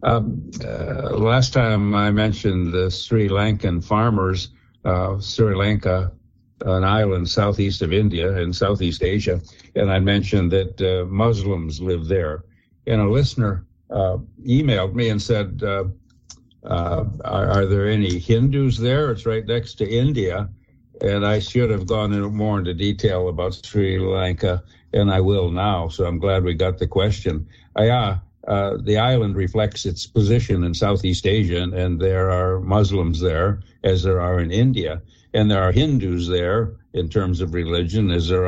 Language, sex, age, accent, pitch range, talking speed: English, male, 60-79, American, 90-110 Hz, 165 wpm